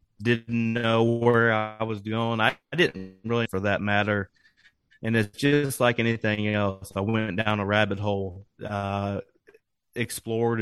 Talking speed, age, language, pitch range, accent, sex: 155 wpm, 30-49, English, 105-125 Hz, American, male